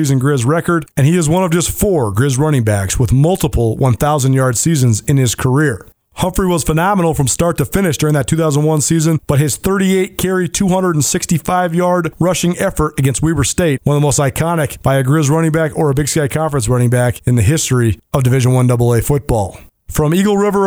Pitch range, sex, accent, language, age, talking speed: 125-170 Hz, male, American, English, 40-59, 195 wpm